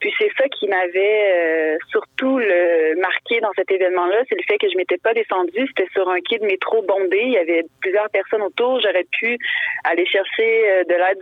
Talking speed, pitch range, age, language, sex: 210 wpm, 185-265 Hz, 30-49, French, female